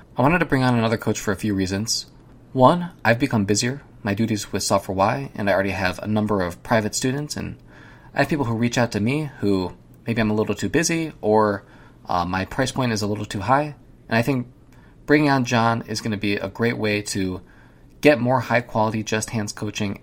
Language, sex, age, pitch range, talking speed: English, male, 20-39, 100-125 Hz, 230 wpm